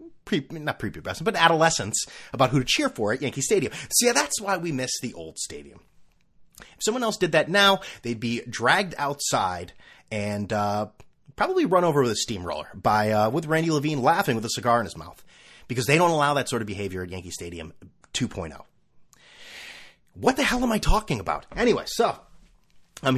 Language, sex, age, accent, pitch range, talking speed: English, male, 30-49, American, 110-160 Hz, 195 wpm